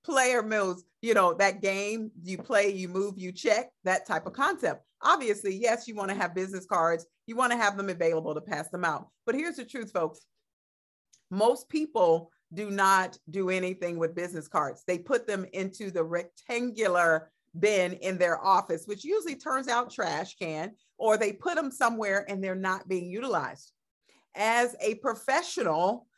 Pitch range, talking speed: 170-230 Hz, 175 wpm